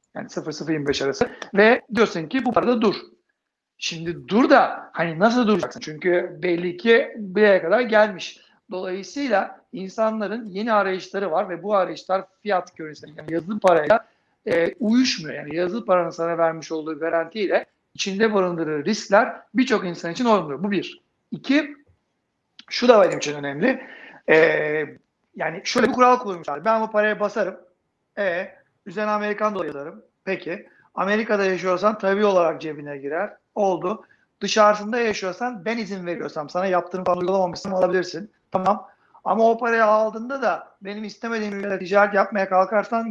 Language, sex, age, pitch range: Turkish, male, 60-79, 170-220 Hz